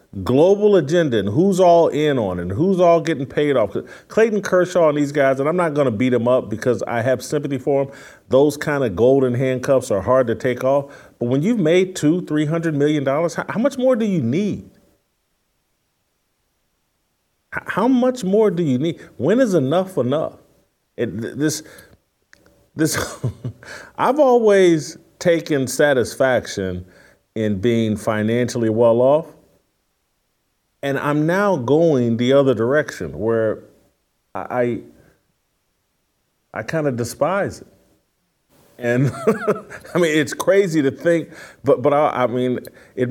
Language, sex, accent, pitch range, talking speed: English, male, American, 125-165 Hz, 150 wpm